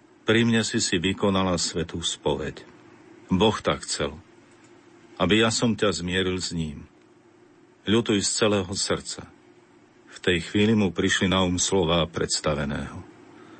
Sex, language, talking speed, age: male, Slovak, 135 wpm, 50-69